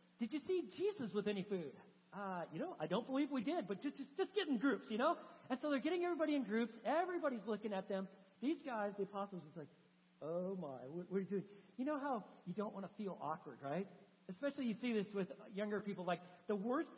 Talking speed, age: 235 wpm, 50-69